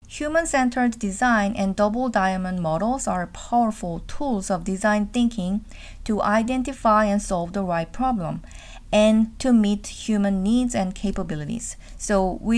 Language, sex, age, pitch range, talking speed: English, female, 40-59, 195-245 Hz, 135 wpm